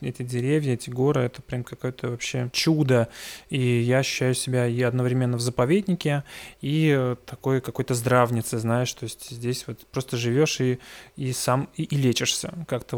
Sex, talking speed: male, 160 wpm